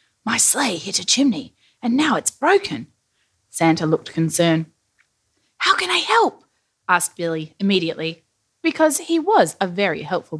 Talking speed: 145 wpm